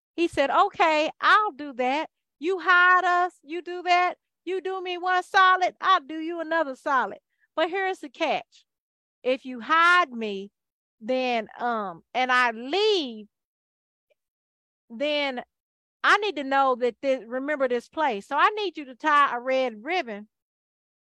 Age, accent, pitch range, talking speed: 40-59, American, 235-340 Hz, 150 wpm